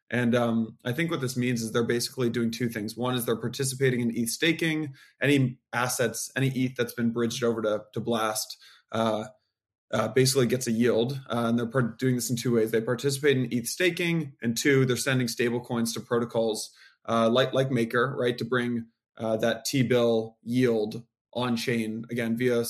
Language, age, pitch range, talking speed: English, 20-39, 115-130 Hz, 195 wpm